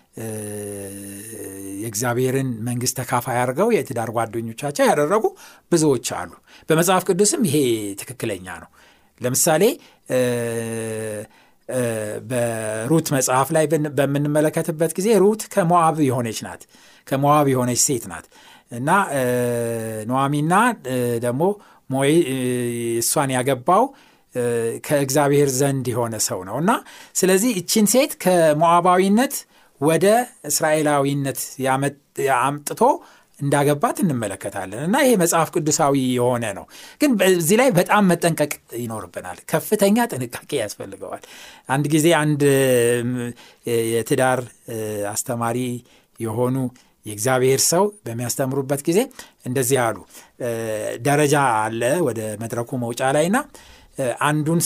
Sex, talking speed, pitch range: male, 90 wpm, 120-165 Hz